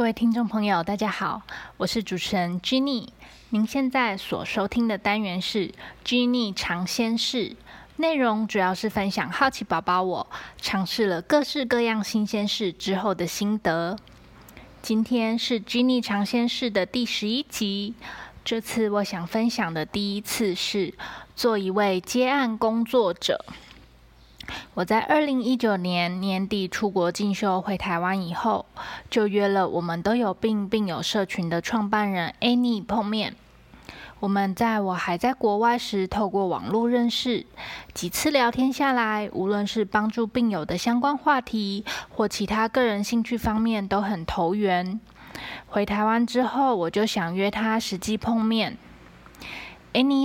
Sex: female